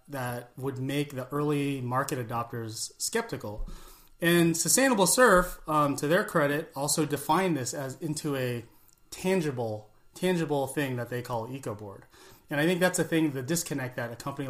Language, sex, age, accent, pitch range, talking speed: English, male, 30-49, American, 120-150 Hz, 165 wpm